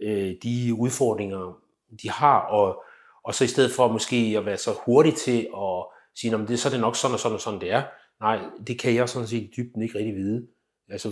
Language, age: Danish, 30-49